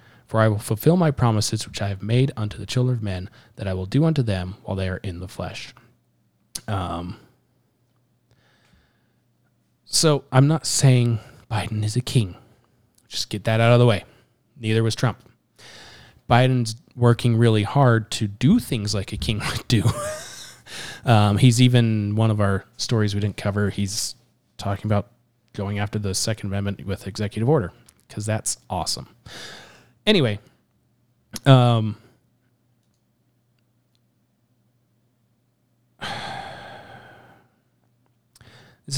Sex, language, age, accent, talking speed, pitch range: male, English, 20-39, American, 130 wpm, 105-125 Hz